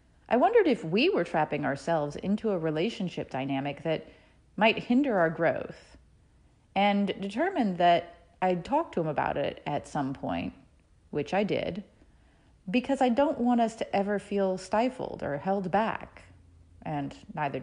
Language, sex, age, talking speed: English, female, 30-49, 155 wpm